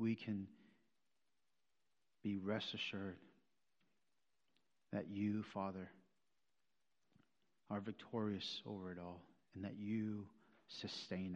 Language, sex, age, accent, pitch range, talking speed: English, male, 50-69, American, 90-100 Hz, 90 wpm